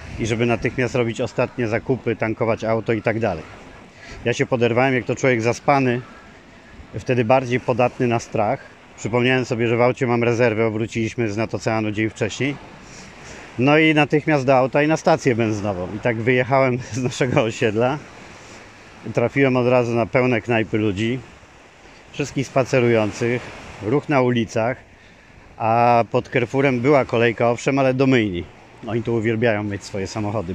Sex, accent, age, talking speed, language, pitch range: male, native, 40-59, 155 wpm, Polish, 110-130 Hz